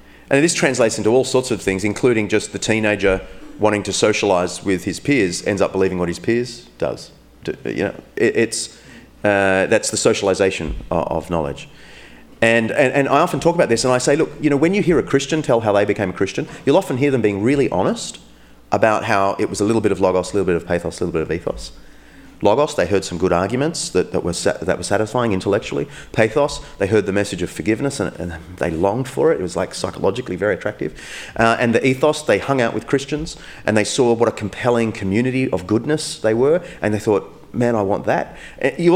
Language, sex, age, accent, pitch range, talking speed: English, male, 30-49, Australian, 90-135 Hz, 220 wpm